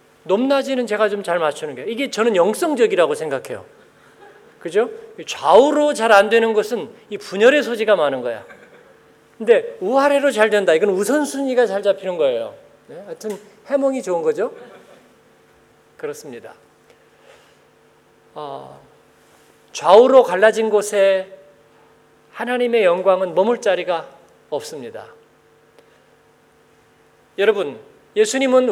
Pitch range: 210-330 Hz